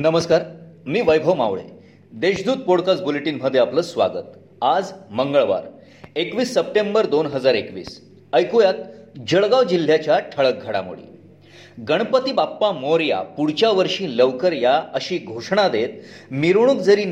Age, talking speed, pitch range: 40-59, 115 wpm, 150-210 Hz